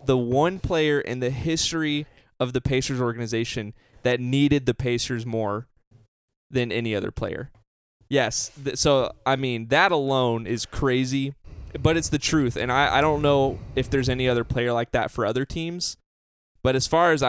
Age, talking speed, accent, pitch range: 20-39, 175 wpm, American, 115-140 Hz